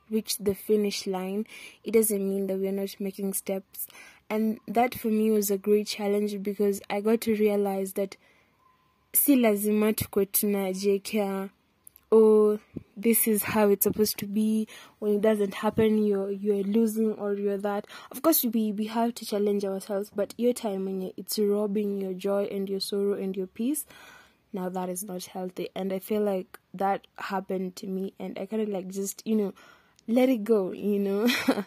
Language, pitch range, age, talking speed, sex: English, 200-225 Hz, 20-39, 175 wpm, female